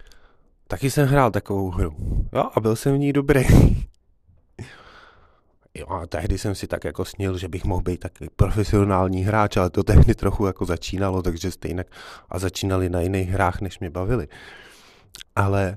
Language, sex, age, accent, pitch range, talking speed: Czech, male, 30-49, native, 95-130 Hz, 165 wpm